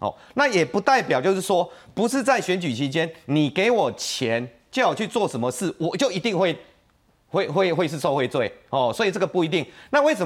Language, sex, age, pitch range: Chinese, male, 30-49, 125-210 Hz